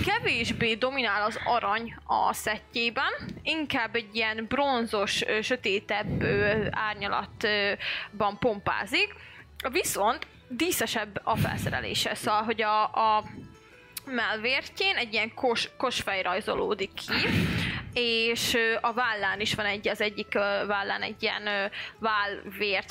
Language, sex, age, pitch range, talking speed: Hungarian, female, 20-39, 210-240 Hz, 100 wpm